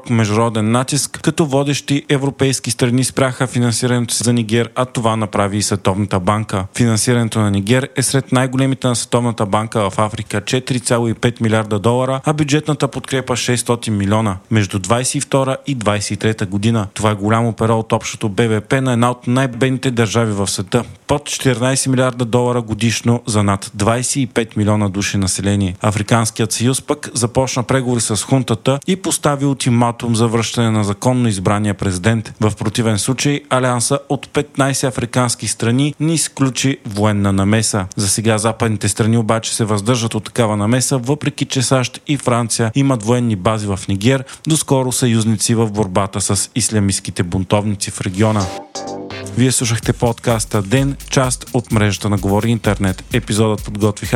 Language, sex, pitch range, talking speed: Bulgarian, male, 105-130 Hz, 145 wpm